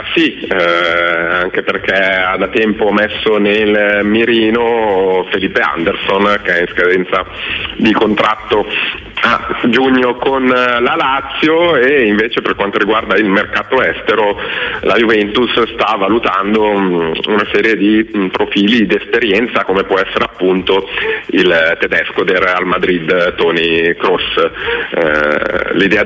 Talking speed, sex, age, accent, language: 120 wpm, male, 30-49, native, Italian